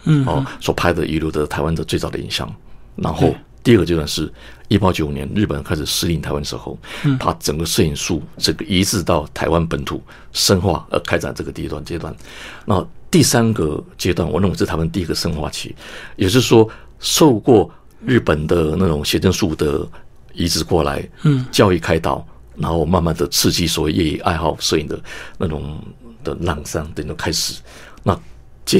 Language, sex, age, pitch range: Chinese, male, 50-69, 80-105 Hz